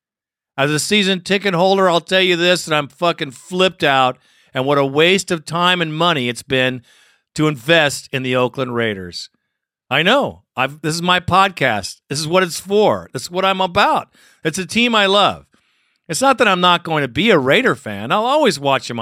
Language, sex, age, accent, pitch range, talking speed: English, male, 50-69, American, 130-180 Hz, 210 wpm